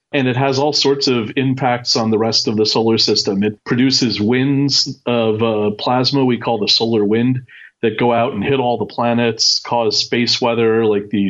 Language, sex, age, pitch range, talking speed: English, male, 40-59, 110-130 Hz, 200 wpm